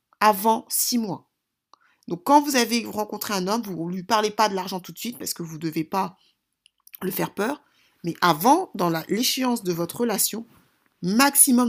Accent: French